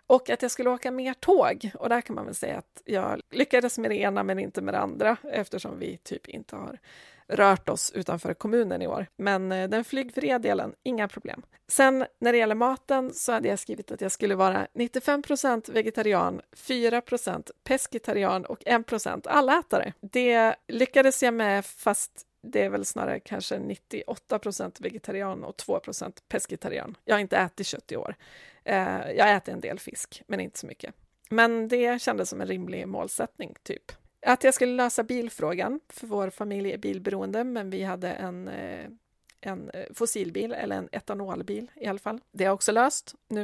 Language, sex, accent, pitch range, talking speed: Swedish, female, native, 200-255 Hz, 175 wpm